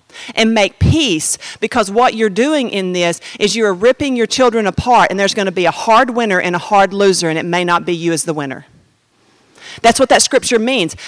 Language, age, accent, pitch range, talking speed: English, 40-59, American, 210-300 Hz, 220 wpm